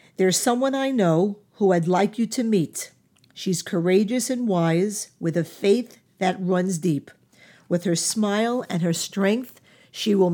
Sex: female